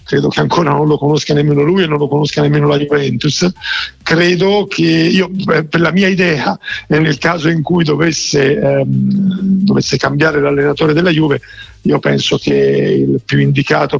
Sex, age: male, 50-69